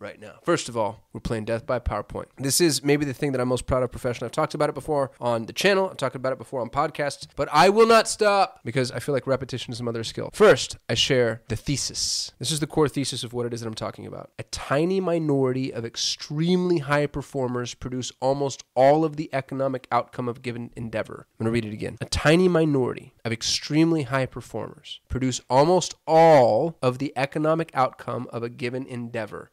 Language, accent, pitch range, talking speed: English, American, 120-155 Hz, 220 wpm